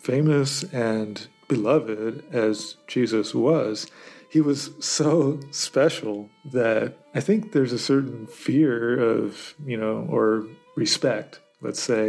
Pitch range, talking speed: 110-145 Hz, 120 wpm